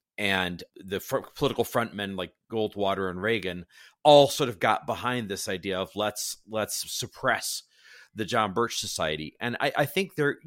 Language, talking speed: English, 170 wpm